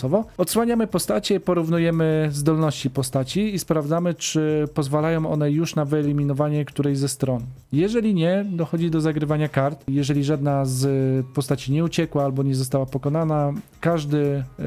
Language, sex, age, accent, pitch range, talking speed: Polish, male, 40-59, native, 140-165 Hz, 135 wpm